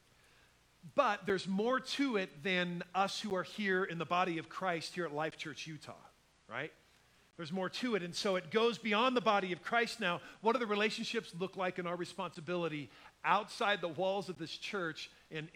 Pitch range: 155-200 Hz